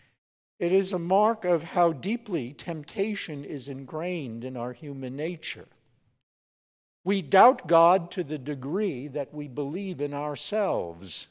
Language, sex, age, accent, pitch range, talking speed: English, male, 60-79, American, 130-180 Hz, 135 wpm